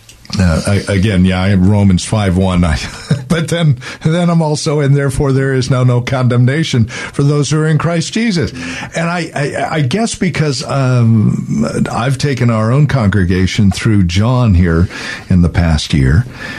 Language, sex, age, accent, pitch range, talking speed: English, male, 50-69, American, 100-145 Hz, 175 wpm